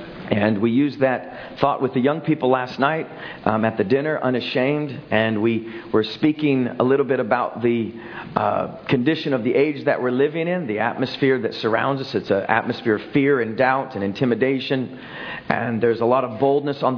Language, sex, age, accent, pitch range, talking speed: English, male, 40-59, American, 125-165 Hz, 195 wpm